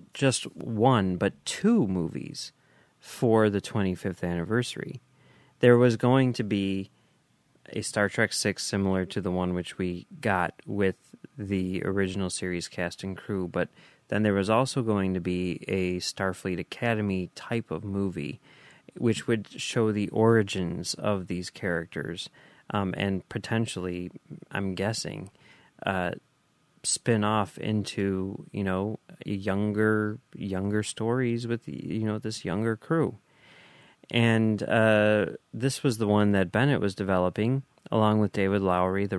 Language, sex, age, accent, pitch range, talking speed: English, male, 30-49, American, 90-110 Hz, 135 wpm